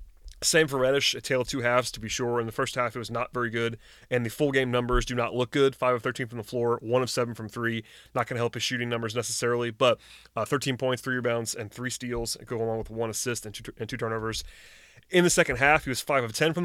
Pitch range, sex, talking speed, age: 115-135 Hz, male, 280 wpm, 30-49